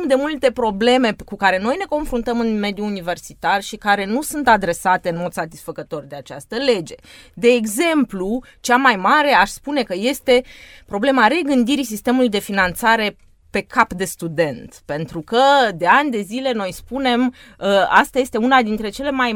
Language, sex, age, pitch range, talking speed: Romanian, female, 20-39, 185-280 Hz, 165 wpm